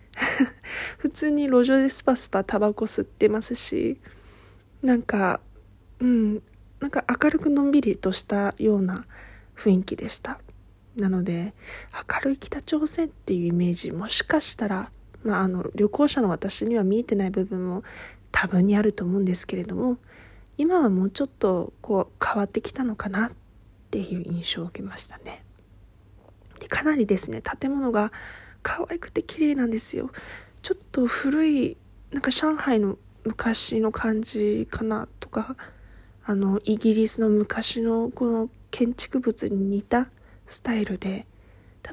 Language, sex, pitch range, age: Japanese, female, 195-250 Hz, 20-39